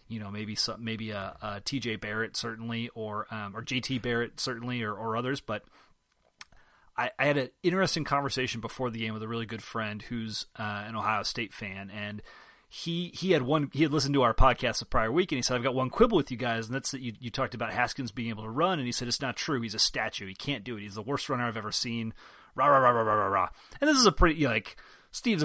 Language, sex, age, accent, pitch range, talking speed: English, male, 30-49, American, 110-135 Hz, 260 wpm